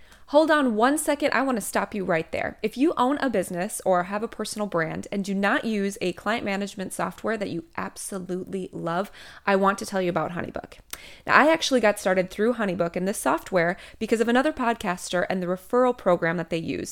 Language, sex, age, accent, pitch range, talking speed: English, female, 20-39, American, 180-230 Hz, 215 wpm